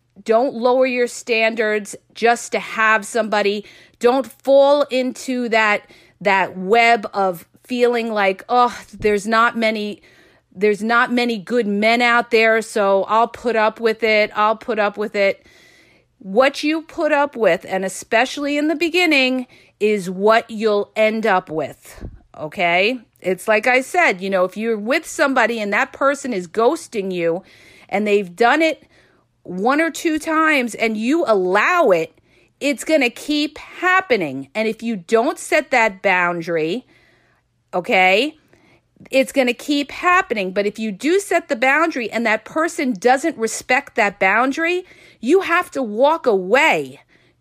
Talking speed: 155 wpm